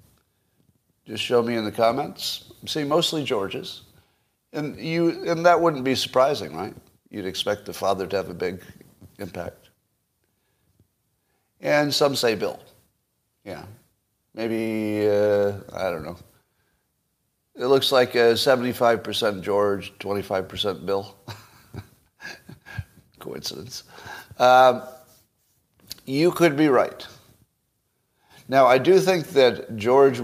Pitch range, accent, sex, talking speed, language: 105-135 Hz, American, male, 115 wpm, English